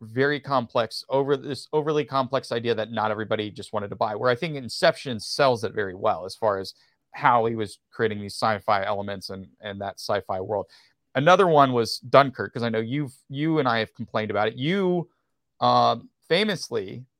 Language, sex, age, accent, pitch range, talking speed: English, male, 30-49, American, 105-135 Hz, 195 wpm